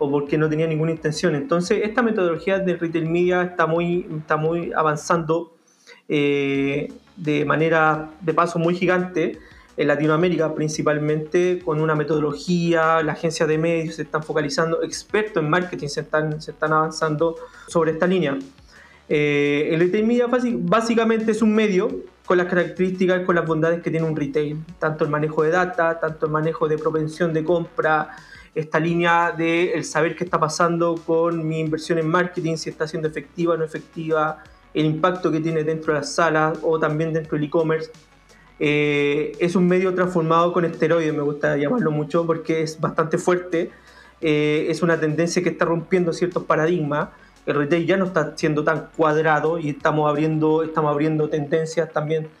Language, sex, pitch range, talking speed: Spanish, male, 155-170 Hz, 170 wpm